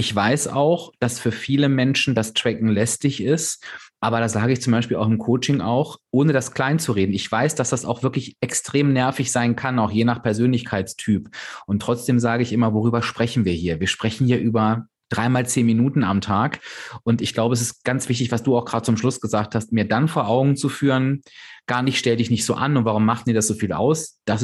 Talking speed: 235 wpm